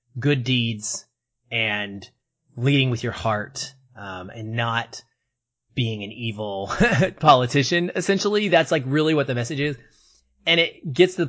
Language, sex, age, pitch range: English, male, 20-39, 120-145 Hz